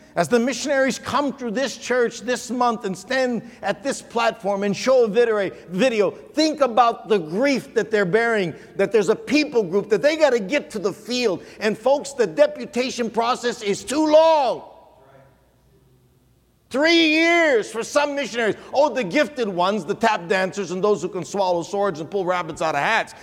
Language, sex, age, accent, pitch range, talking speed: English, male, 50-69, American, 190-260 Hz, 180 wpm